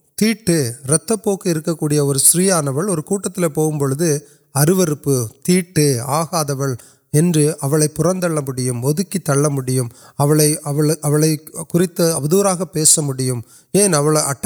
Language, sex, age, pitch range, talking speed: Urdu, male, 30-49, 140-175 Hz, 60 wpm